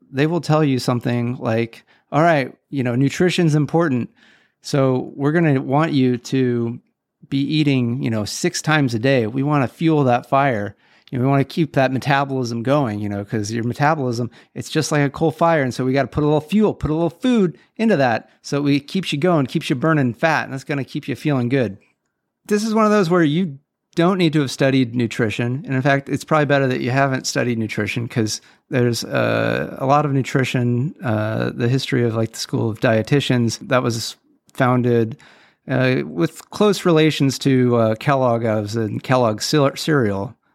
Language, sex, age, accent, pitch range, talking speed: English, male, 40-59, American, 120-155 Hz, 205 wpm